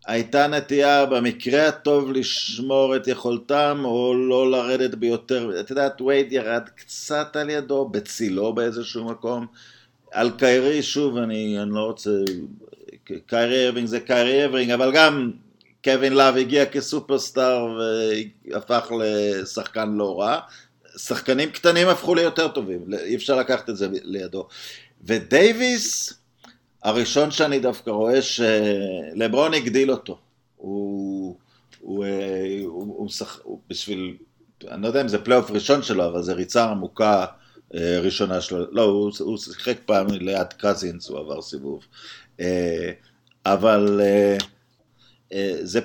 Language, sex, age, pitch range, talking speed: Hebrew, male, 50-69, 105-135 Hz, 125 wpm